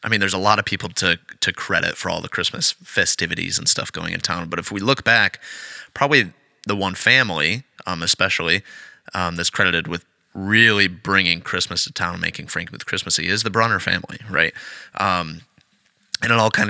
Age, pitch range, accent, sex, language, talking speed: 20-39, 90-105 Hz, American, male, English, 200 wpm